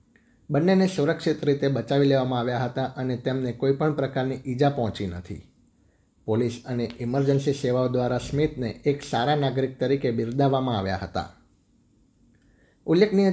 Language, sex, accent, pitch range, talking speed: Gujarati, male, native, 115-140 Hz, 130 wpm